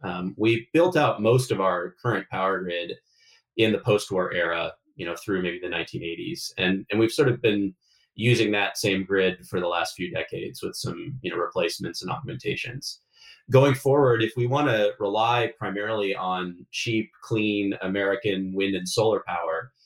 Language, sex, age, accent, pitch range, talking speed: English, male, 30-49, American, 95-120 Hz, 180 wpm